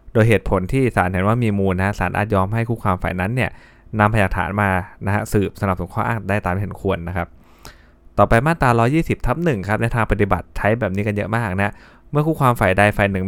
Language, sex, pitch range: Thai, male, 100-120 Hz